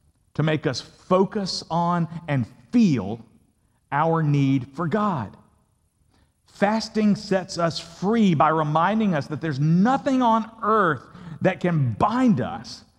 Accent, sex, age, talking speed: American, male, 50-69, 125 wpm